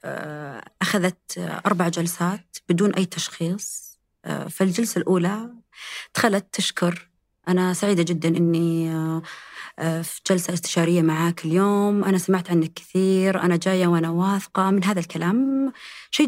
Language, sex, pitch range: Arabic, female, 165-200 Hz